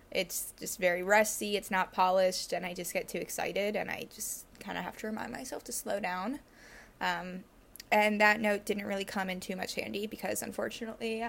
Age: 10-29